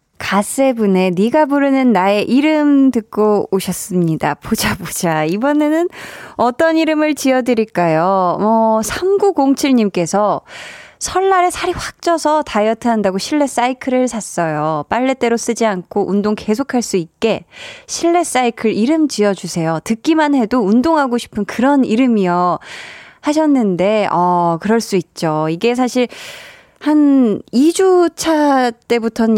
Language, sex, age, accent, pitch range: Korean, female, 20-39, native, 195-275 Hz